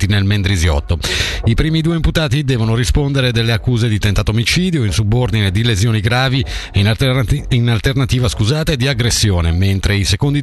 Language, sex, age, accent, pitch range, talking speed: Italian, male, 50-69, native, 100-130 Hz, 155 wpm